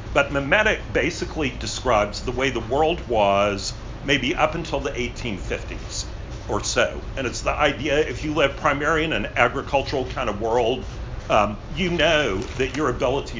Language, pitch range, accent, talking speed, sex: English, 105-140 Hz, American, 160 wpm, male